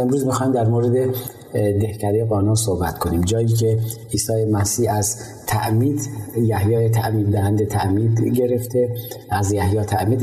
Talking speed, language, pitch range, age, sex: 130 wpm, Persian, 100-120 Hz, 30-49, male